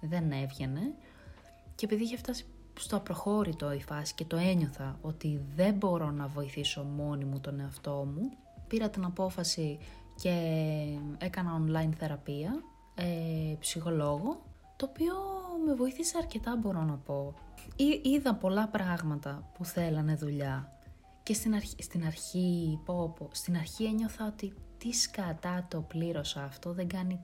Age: 20-39